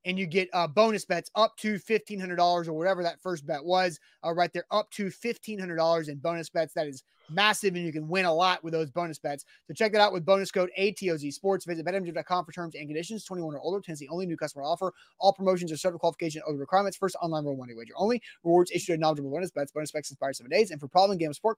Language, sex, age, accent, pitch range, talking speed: English, male, 30-49, American, 165-200 Hz, 250 wpm